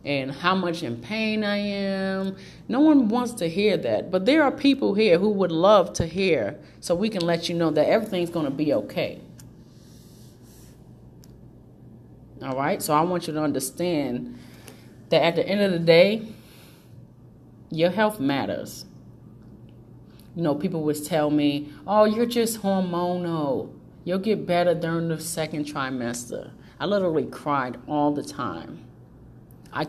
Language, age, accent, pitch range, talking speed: English, 30-49, American, 145-190 Hz, 155 wpm